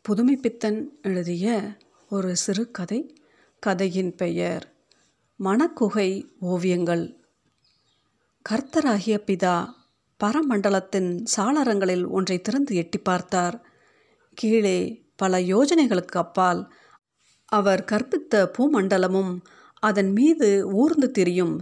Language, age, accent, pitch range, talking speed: Tamil, 50-69, native, 180-230 Hz, 70 wpm